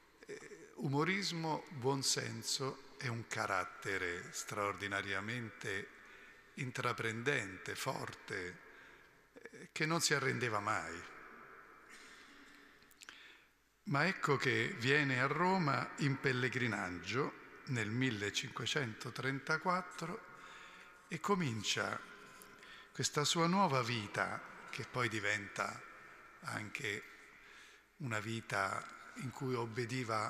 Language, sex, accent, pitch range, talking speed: Italian, male, native, 120-160 Hz, 75 wpm